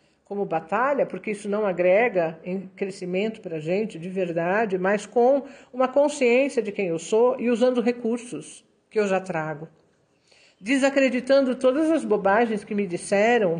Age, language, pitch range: 50-69, Portuguese, 180-230 Hz